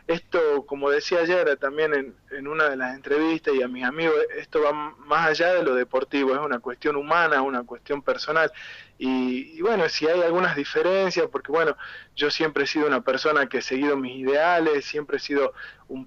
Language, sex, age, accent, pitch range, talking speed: Spanish, male, 20-39, Argentinian, 135-165 Hz, 200 wpm